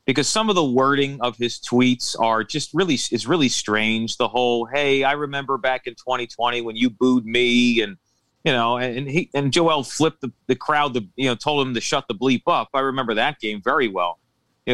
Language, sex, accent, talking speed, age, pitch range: English, male, American, 220 wpm, 40-59, 115-140 Hz